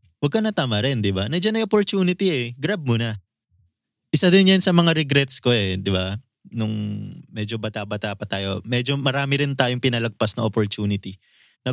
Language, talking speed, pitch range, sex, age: Filipino, 185 wpm, 105-130 Hz, male, 20-39